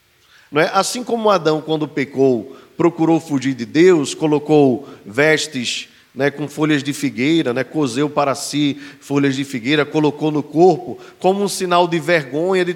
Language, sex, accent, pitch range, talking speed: Portuguese, male, Brazilian, 135-170 Hz, 150 wpm